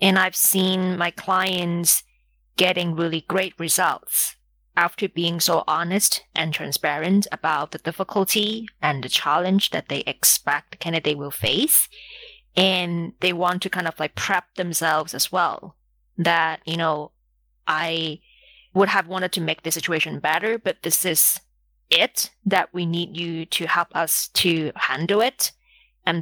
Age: 30-49